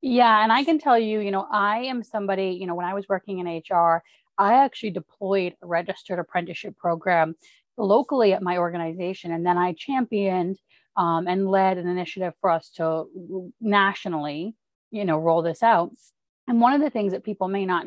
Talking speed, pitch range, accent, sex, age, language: 190 wpm, 175-215 Hz, American, female, 30-49, English